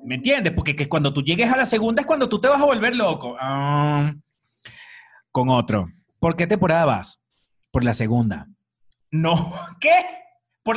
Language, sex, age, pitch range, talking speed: Spanish, male, 30-49, 135-190 Hz, 175 wpm